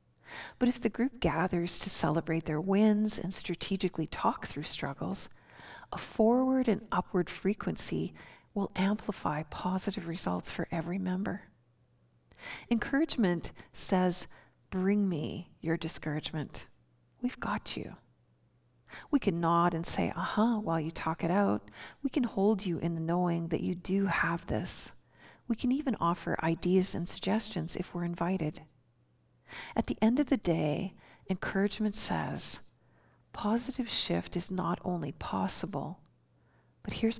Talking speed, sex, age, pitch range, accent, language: 135 wpm, female, 40-59, 165-200 Hz, American, English